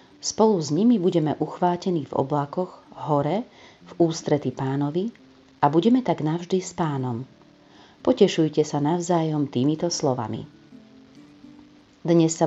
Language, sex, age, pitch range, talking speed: Slovak, female, 40-59, 145-185 Hz, 115 wpm